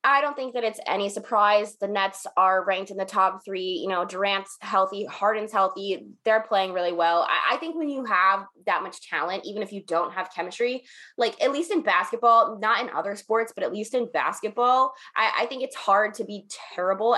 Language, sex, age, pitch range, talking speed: English, female, 20-39, 195-255 Hz, 215 wpm